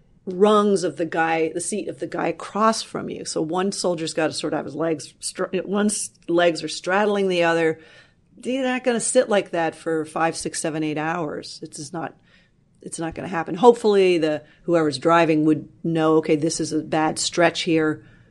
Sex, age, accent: female, 40-59, American